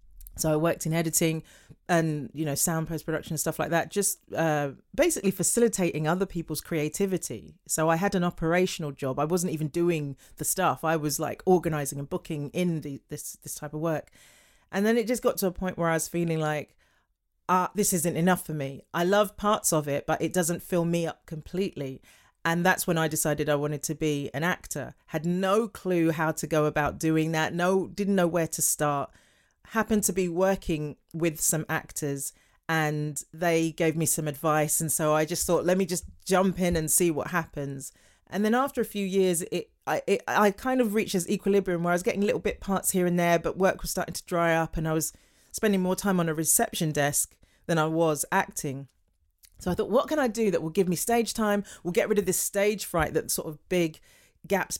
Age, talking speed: 30-49, 220 wpm